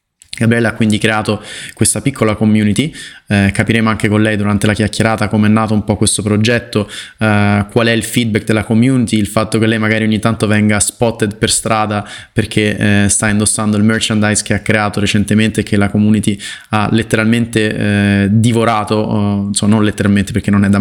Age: 20-39